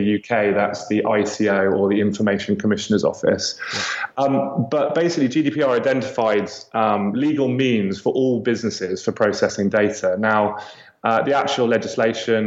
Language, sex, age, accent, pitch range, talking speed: English, male, 20-39, British, 105-120 Hz, 135 wpm